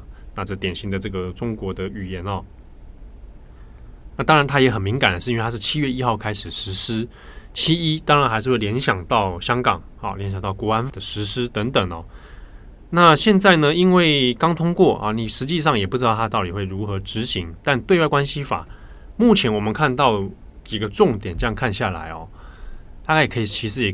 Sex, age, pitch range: male, 20-39, 95-130 Hz